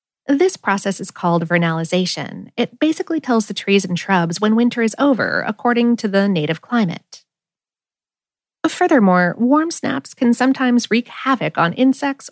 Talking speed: 145 wpm